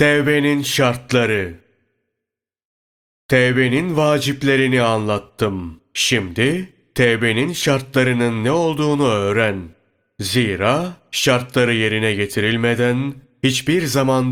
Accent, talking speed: native, 70 wpm